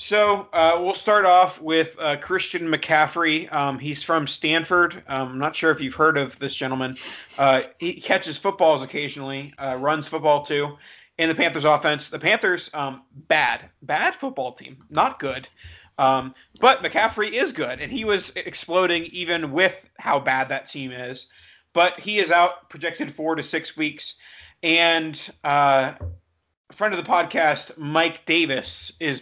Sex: male